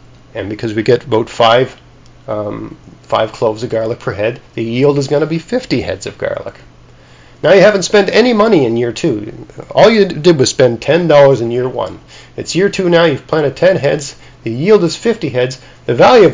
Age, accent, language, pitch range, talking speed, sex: 40-59, American, English, 115-150 Hz, 210 wpm, male